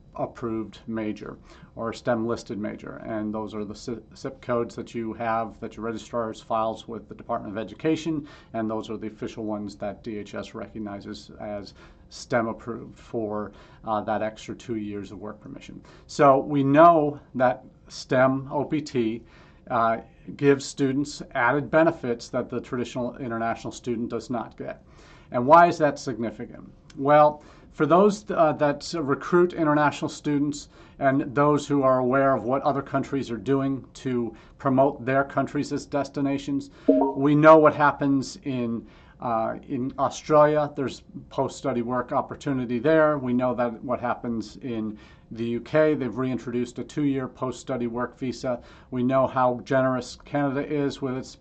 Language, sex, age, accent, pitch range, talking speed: English, male, 40-59, American, 115-145 Hz, 155 wpm